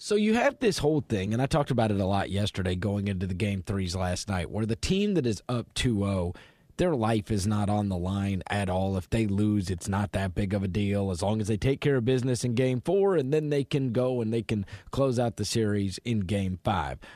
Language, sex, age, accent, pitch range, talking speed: English, male, 30-49, American, 105-140 Hz, 255 wpm